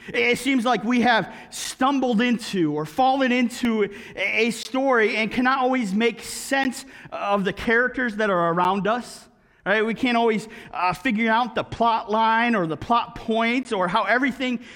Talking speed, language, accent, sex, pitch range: 165 wpm, English, American, male, 205-250 Hz